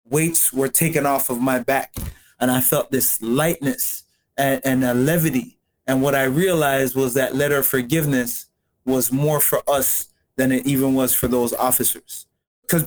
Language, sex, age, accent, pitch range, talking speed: English, male, 30-49, American, 135-165 Hz, 175 wpm